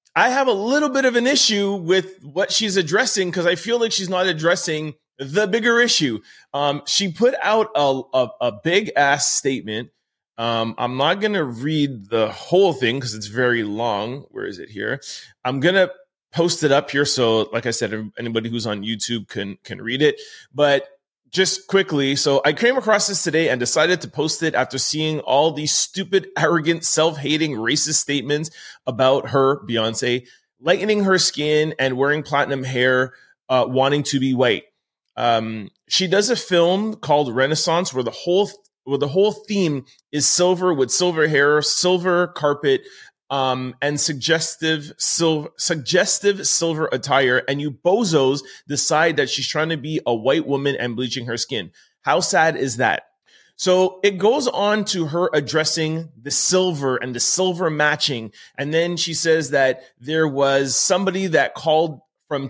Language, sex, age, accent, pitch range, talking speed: English, male, 30-49, American, 135-185 Hz, 170 wpm